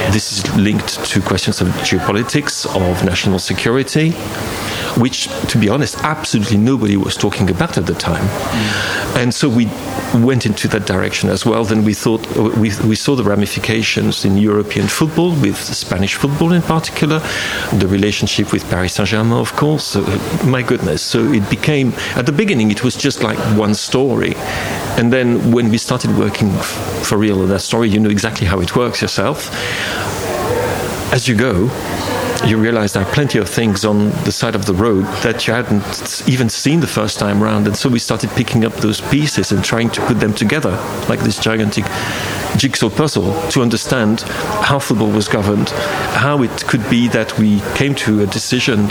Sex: male